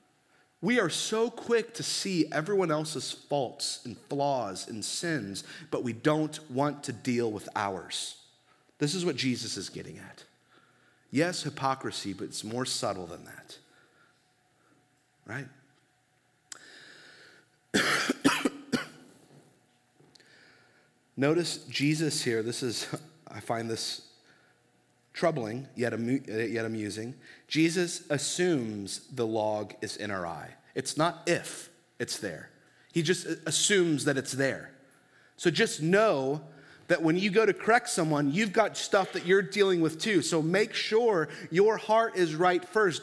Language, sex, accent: English, male, American